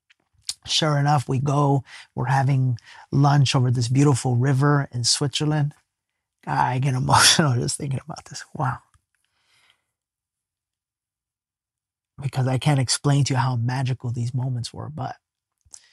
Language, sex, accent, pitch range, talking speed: English, male, American, 120-145 Hz, 125 wpm